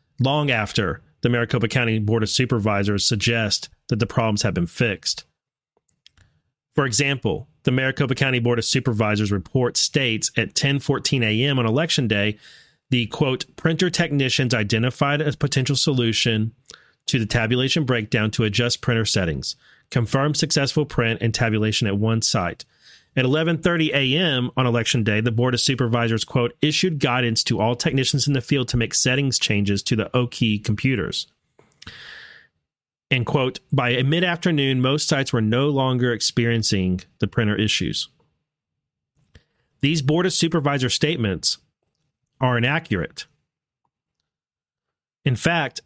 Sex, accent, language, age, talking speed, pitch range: male, American, English, 40-59, 135 wpm, 115-140 Hz